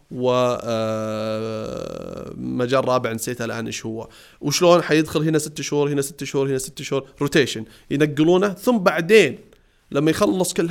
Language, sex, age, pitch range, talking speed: Arabic, male, 30-49, 135-185 Hz, 140 wpm